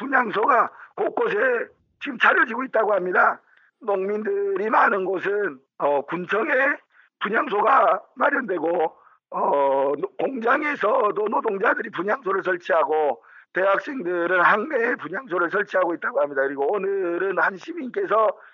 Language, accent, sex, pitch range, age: Korean, native, male, 180-295 Hz, 50-69